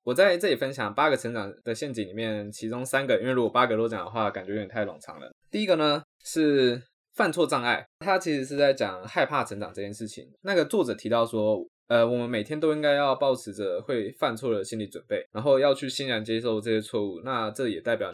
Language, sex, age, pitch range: Chinese, male, 20-39, 110-140 Hz